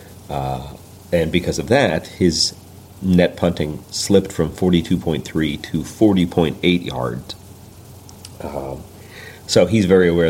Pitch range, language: 80-95 Hz, English